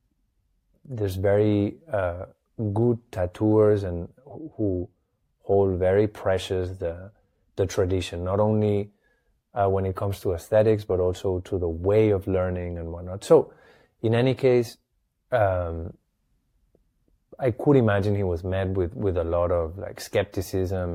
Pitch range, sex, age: 90-105 Hz, male, 20-39